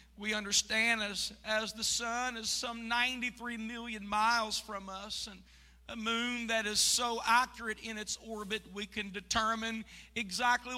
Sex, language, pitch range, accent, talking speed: male, English, 220-295 Hz, American, 150 wpm